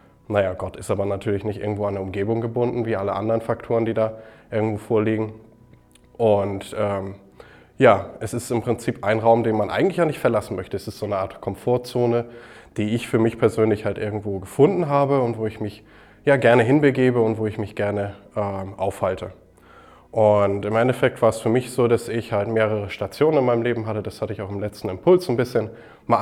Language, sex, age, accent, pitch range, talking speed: German, male, 20-39, German, 100-115 Hz, 205 wpm